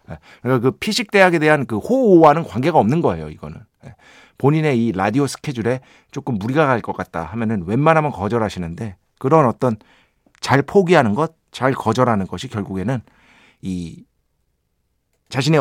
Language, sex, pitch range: Korean, male, 105-170 Hz